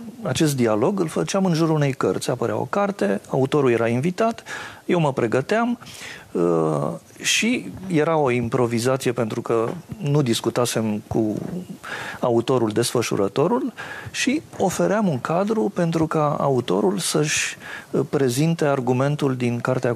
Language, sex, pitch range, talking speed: English, male, 120-180 Hz, 120 wpm